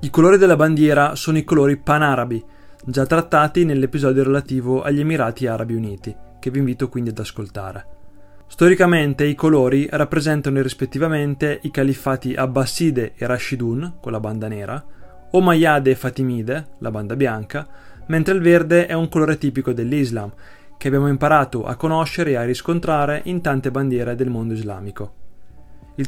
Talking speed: 150 wpm